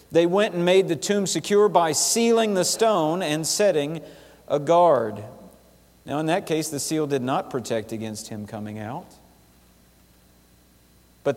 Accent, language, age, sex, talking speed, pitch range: American, English, 50-69, male, 155 wpm, 130-195 Hz